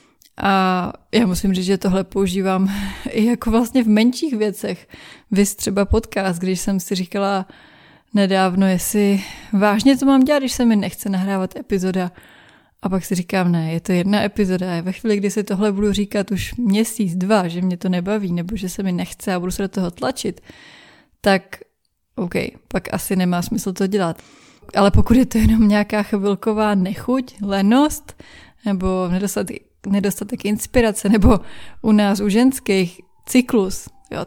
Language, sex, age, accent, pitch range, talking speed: Czech, female, 20-39, native, 190-220 Hz, 170 wpm